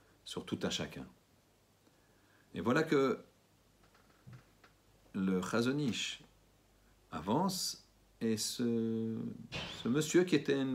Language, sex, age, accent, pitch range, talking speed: French, male, 50-69, French, 95-125 Hz, 95 wpm